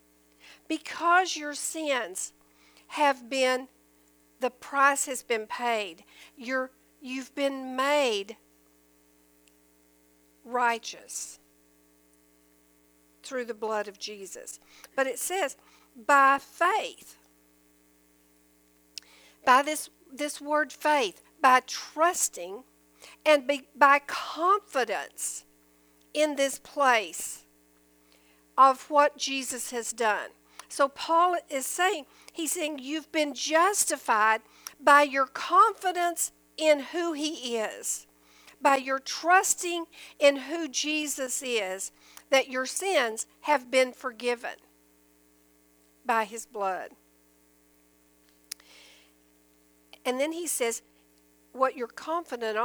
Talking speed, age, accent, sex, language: 90 wpm, 50-69, American, female, English